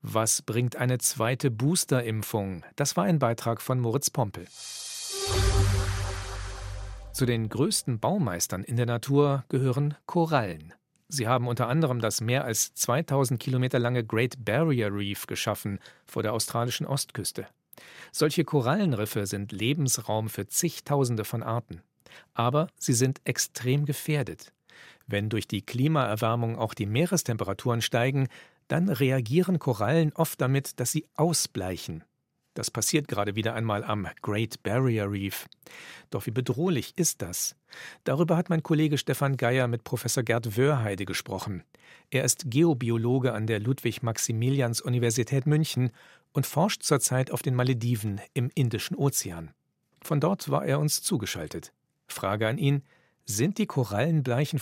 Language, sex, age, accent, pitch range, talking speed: German, male, 40-59, German, 110-145 Hz, 135 wpm